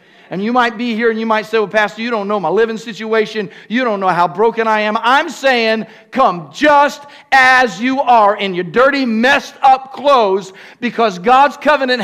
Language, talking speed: English, 200 wpm